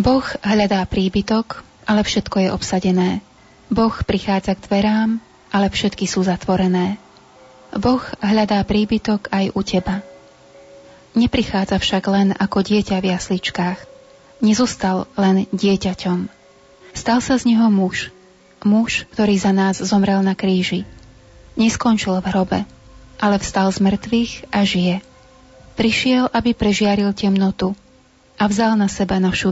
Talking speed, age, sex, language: 125 wpm, 20-39, female, Slovak